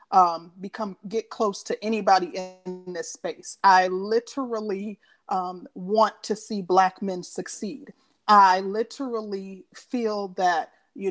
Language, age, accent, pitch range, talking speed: English, 30-49, American, 185-230 Hz, 125 wpm